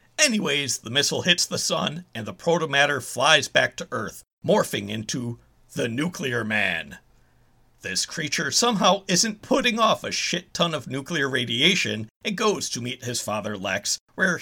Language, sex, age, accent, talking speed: English, male, 50-69, American, 160 wpm